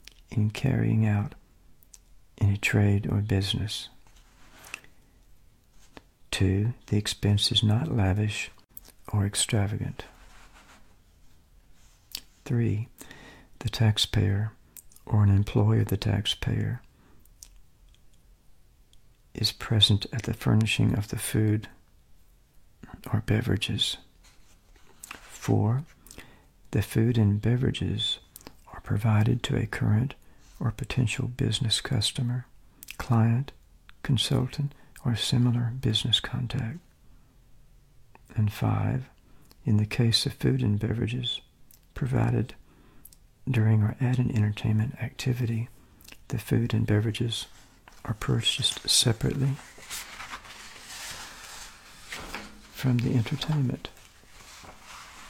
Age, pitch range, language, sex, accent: 60-79, 105-125 Hz, Chinese, male, American